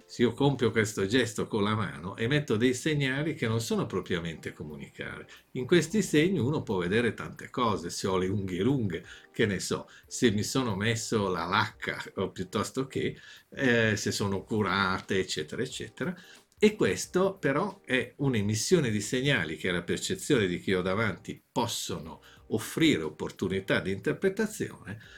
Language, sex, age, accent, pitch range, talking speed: Italian, male, 50-69, native, 100-150 Hz, 160 wpm